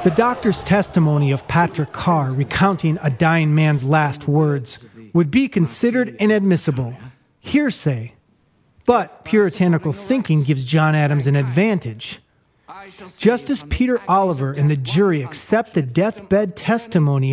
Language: English